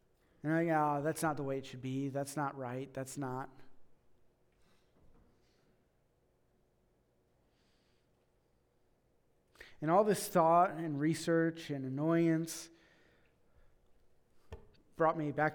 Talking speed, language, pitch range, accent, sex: 95 wpm, English, 135-165 Hz, American, male